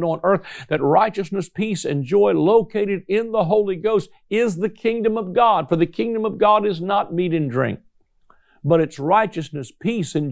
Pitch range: 175-220 Hz